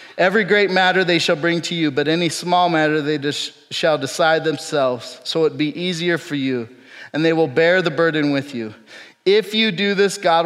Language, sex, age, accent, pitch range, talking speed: English, male, 30-49, American, 130-160 Hz, 200 wpm